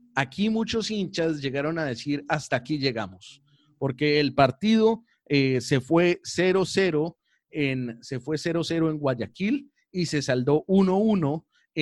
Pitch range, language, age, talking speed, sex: 135-170 Hz, Spanish, 30-49, 130 wpm, male